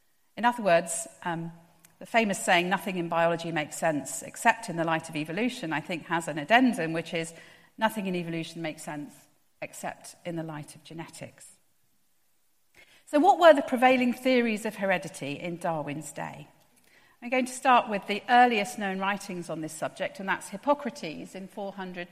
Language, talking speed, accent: English, 175 wpm, British